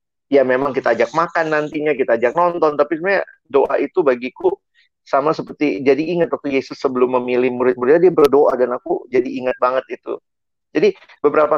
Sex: male